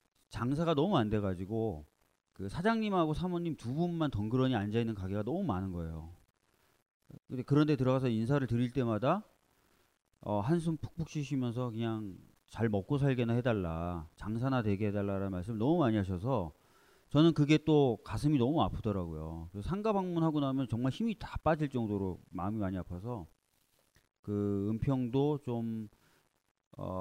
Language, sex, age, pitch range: Korean, male, 30-49, 100-140 Hz